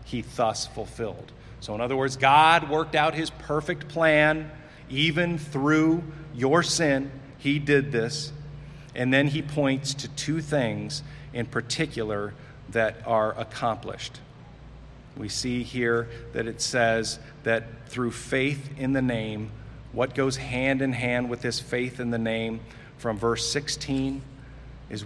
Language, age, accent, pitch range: English, 40-59, American, 115-145 Hz